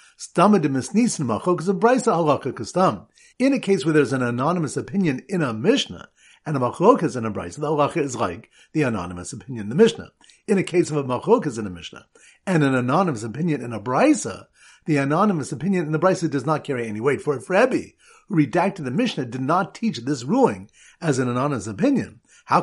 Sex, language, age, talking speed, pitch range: male, English, 50-69, 190 wpm, 140-205 Hz